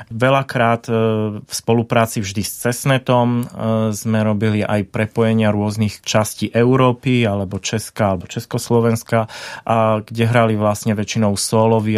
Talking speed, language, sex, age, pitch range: 120 wpm, Czech, male, 30-49, 105-125 Hz